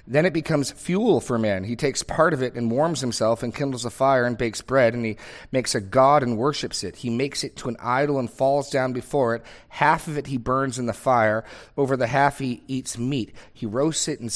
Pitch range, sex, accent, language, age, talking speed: 110-140 Hz, male, American, English, 30-49, 245 wpm